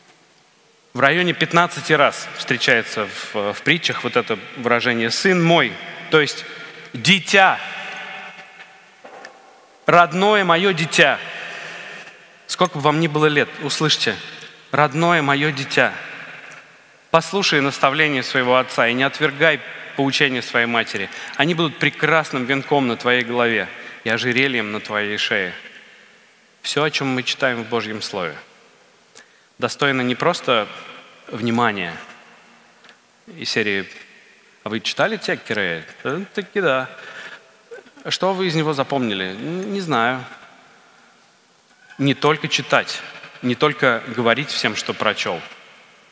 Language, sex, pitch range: Russian, male, 120-160 Hz